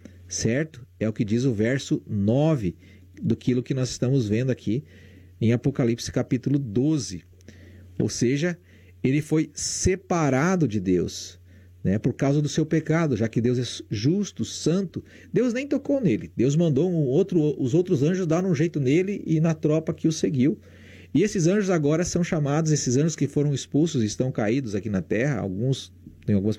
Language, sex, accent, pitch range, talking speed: Portuguese, male, Brazilian, 95-150 Hz, 170 wpm